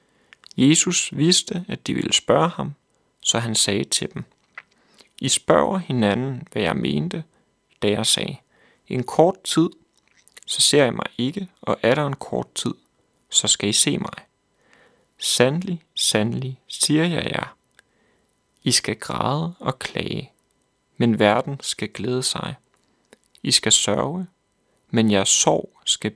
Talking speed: 140 wpm